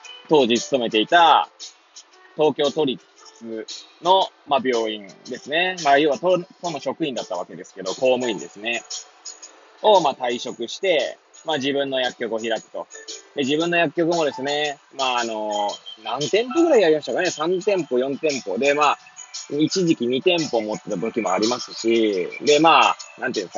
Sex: male